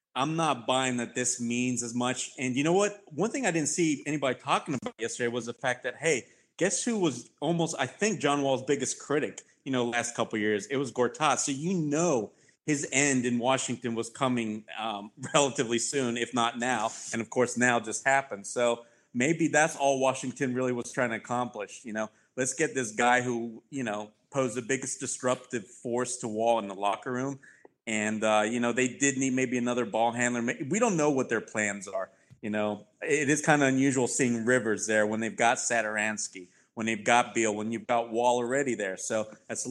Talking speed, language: 210 wpm, English